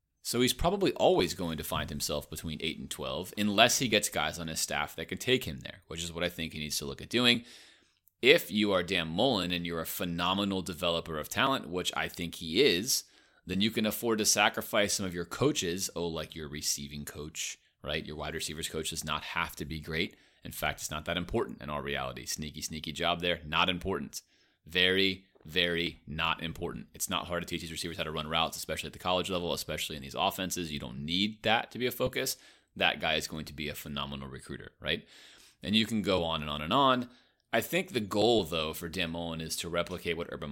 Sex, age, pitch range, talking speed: male, 30-49, 80-95 Hz, 235 wpm